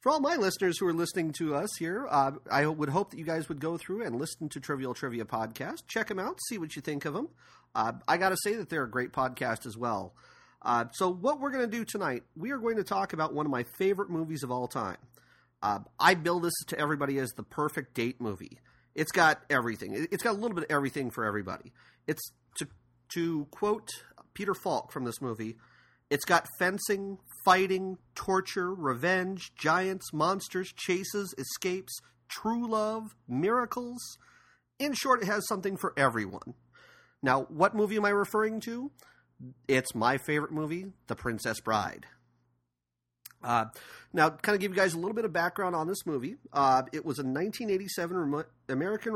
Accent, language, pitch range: American, English, 130-195 Hz